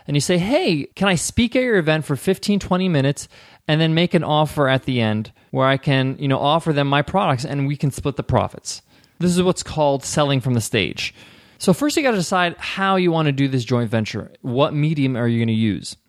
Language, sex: English, male